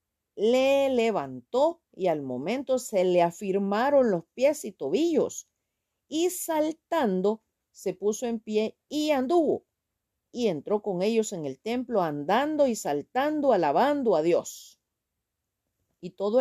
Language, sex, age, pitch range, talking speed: Spanish, female, 50-69, 175-245 Hz, 130 wpm